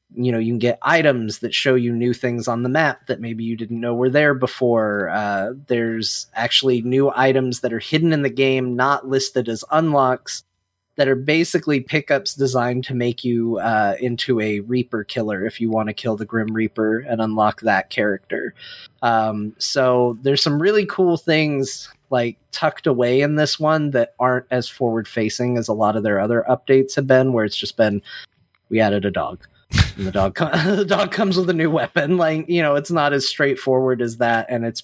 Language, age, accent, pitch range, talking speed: English, 30-49, American, 110-135 Hz, 205 wpm